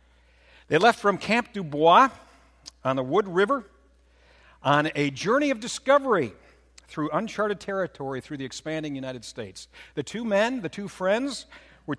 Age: 60-79